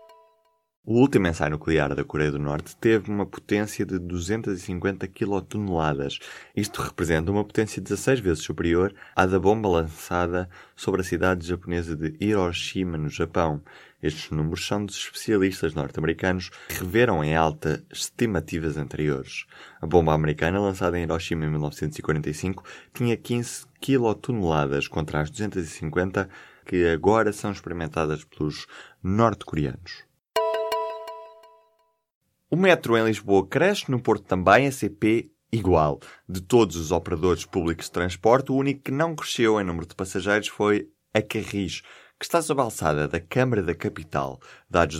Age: 20-39